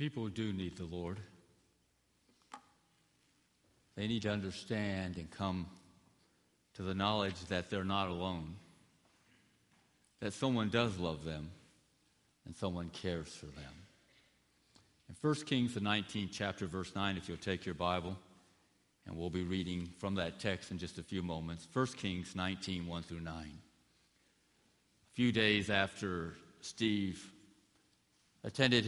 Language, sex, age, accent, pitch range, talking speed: English, male, 50-69, American, 90-125 Hz, 135 wpm